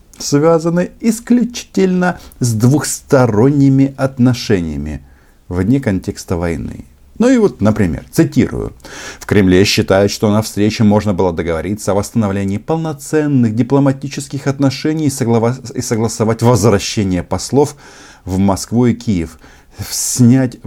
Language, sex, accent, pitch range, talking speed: Russian, male, native, 95-135 Hz, 105 wpm